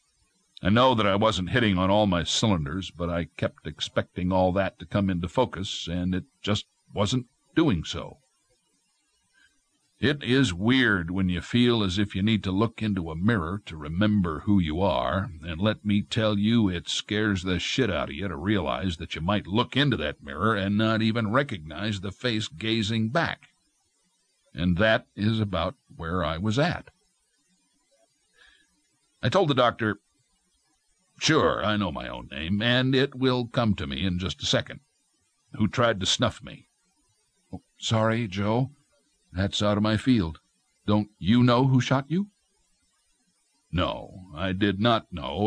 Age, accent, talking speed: 60-79, American, 170 wpm